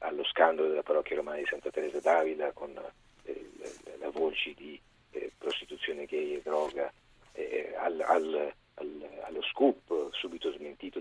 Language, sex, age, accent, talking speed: Italian, male, 40-59, native, 155 wpm